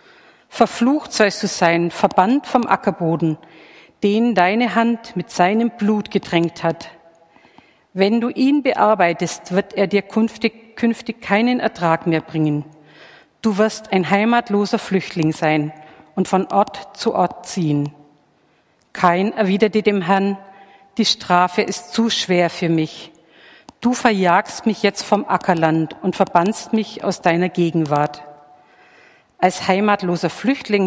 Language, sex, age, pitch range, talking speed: German, female, 50-69, 165-215 Hz, 130 wpm